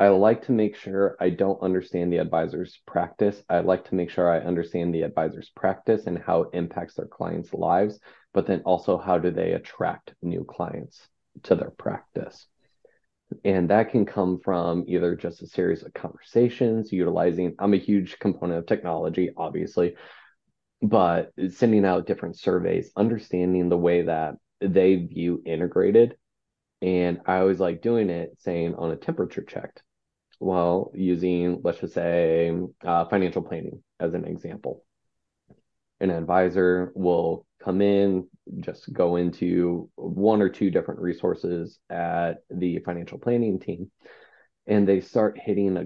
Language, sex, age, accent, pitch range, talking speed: English, male, 20-39, American, 85-100 Hz, 150 wpm